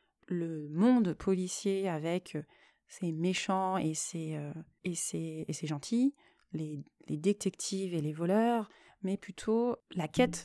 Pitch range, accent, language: 170-220 Hz, French, French